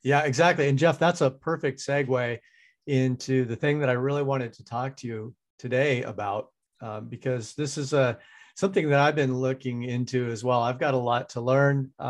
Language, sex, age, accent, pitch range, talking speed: English, male, 40-59, American, 120-135 Hz, 200 wpm